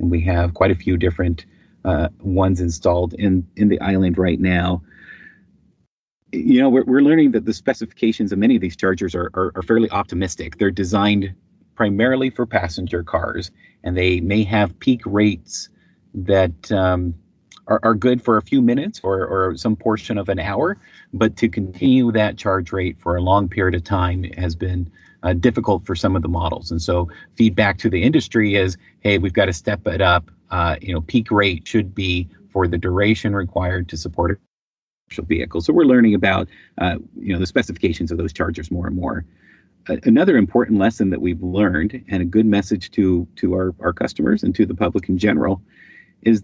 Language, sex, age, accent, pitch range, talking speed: English, male, 30-49, American, 90-110 Hz, 195 wpm